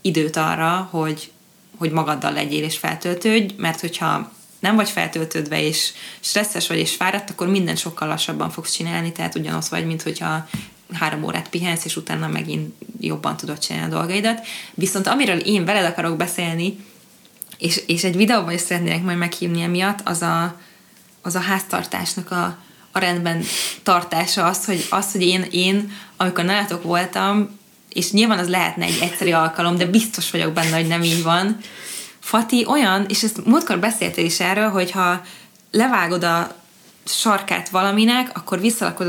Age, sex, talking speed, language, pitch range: 20-39, female, 155 wpm, Hungarian, 170-210 Hz